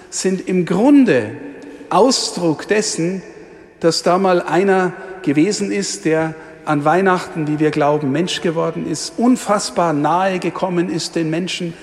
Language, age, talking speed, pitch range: German, 50-69, 130 wpm, 165-210 Hz